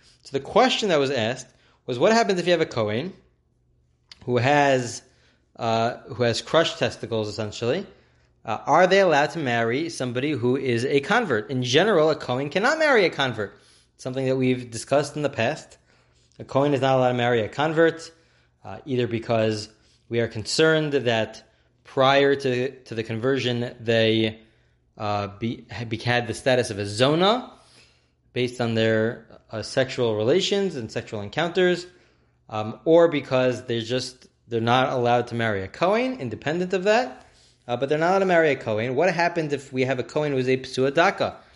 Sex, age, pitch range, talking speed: male, 20-39, 115-150 Hz, 175 wpm